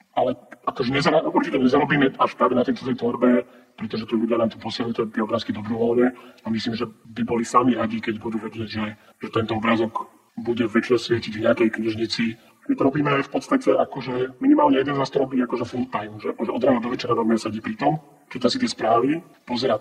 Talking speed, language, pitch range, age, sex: 200 wpm, Slovak, 115-125 Hz, 40-59, male